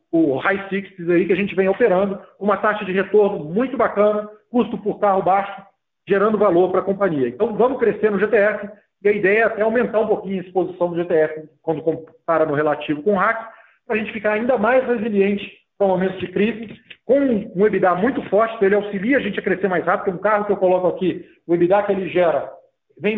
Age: 40-59